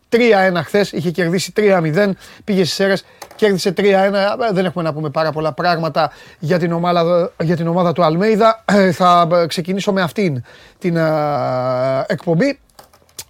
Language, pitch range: Greek, 150-190 Hz